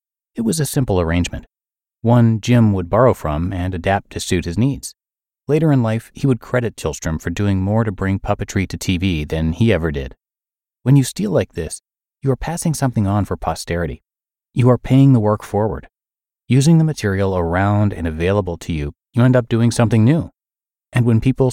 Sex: male